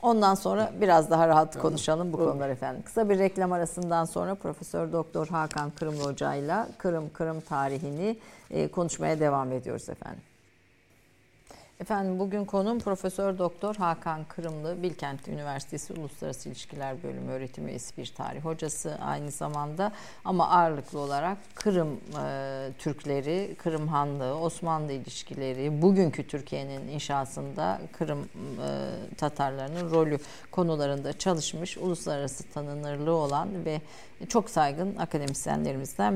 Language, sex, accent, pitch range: Turkish, female, native, 140-180 Hz